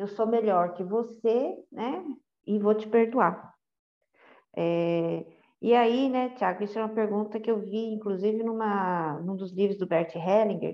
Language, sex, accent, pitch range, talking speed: Portuguese, female, Brazilian, 195-255 Hz, 170 wpm